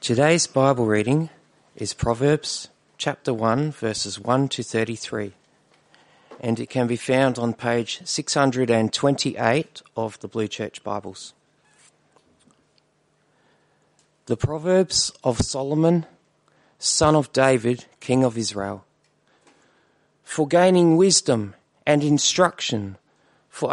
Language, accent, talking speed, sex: English, Australian, 100 wpm, male